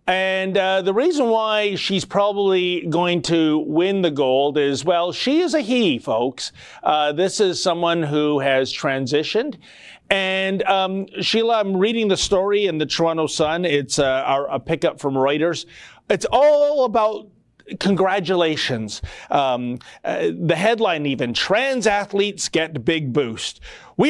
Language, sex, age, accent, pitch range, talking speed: English, male, 40-59, American, 150-200 Hz, 145 wpm